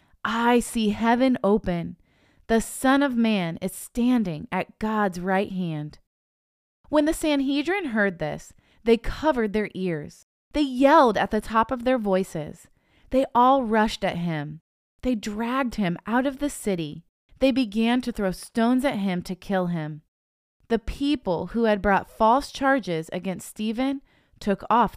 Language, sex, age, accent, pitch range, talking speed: English, female, 20-39, American, 175-240 Hz, 155 wpm